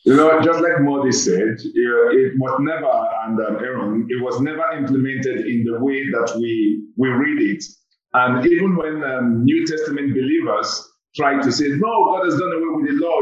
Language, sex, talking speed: English, male, 195 wpm